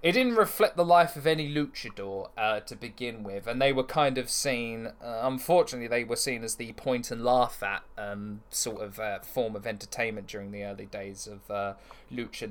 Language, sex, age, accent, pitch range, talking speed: English, male, 20-39, British, 115-160 Hz, 205 wpm